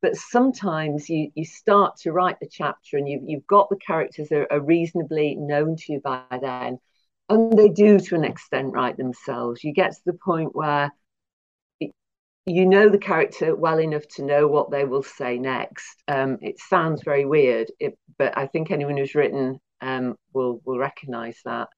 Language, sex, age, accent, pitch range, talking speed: English, female, 50-69, British, 130-180 Hz, 190 wpm